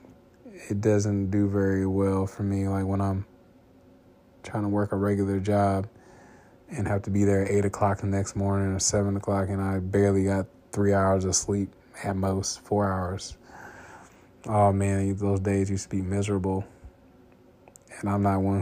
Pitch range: 95-110 Hz